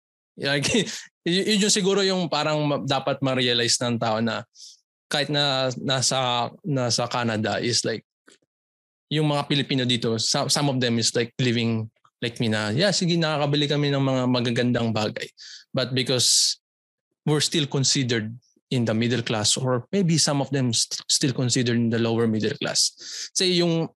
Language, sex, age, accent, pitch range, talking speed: Filipino, male, 20-39, native, 125-160 Hz, 160 wpm